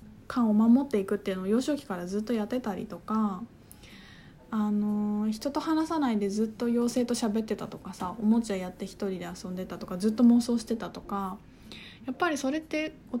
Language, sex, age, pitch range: Japanese, female, 20-39, 205-275 Hz